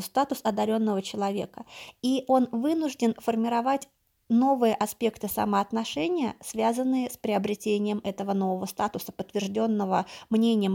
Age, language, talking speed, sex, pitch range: 20-39, Russian, 100 wpm, female, 205-250 Hz